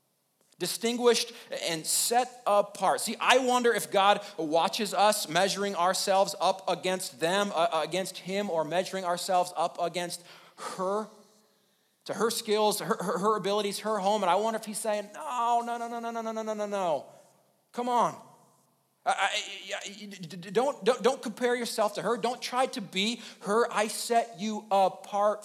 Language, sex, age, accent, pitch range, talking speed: English, male, 40-59, American, 175-215 Hz, 160 wpm